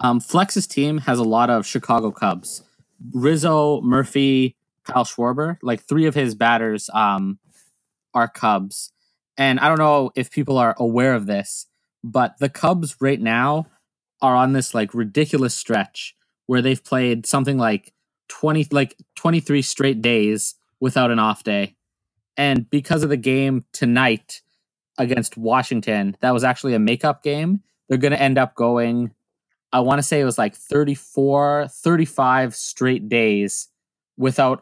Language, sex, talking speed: English, male, 150 wpm